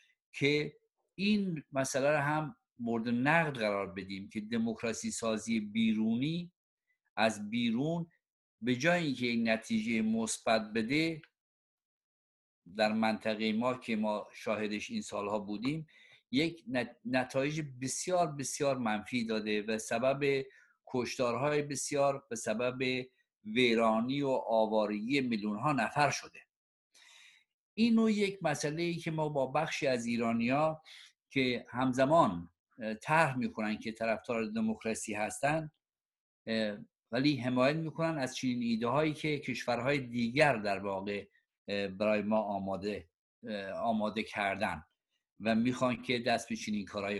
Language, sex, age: Persian, male, 50-69